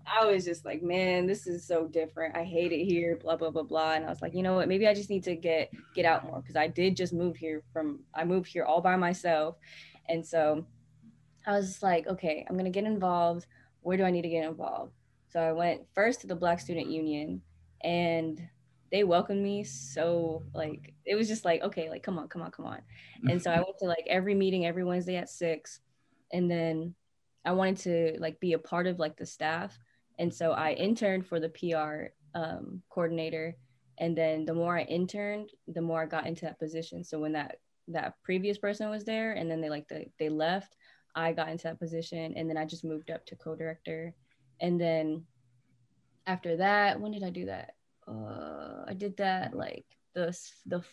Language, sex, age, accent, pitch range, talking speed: English, female, 10-29, American, 160-185 Hz, 215 wpm